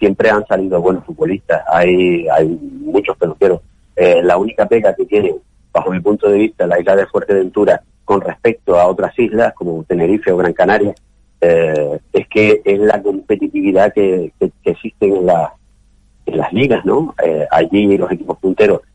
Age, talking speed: 40-59, 175 wpm